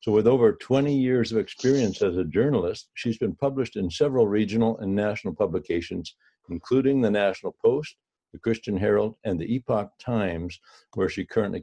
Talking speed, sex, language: 170 wpm, male, English